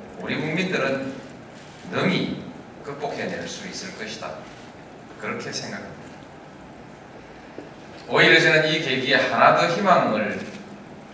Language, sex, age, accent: Korean, male, 40-59, native